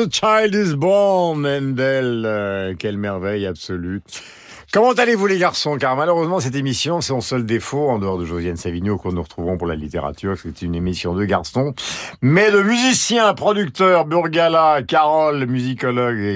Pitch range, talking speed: 90-135 Hz, 165 wpm